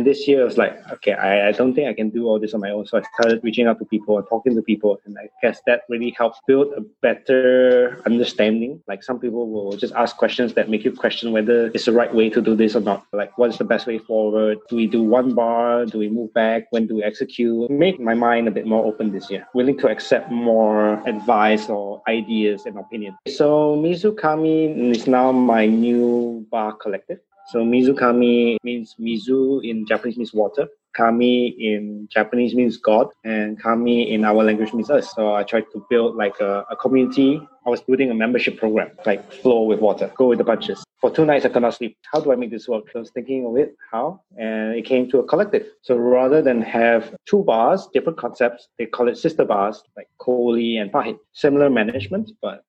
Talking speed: 220 wpm